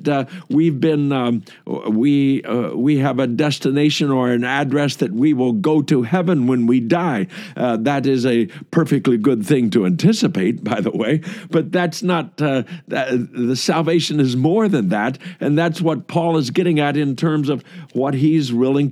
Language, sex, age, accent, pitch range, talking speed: English, male, 60-79, American, 140-180 Hz, 185 wpm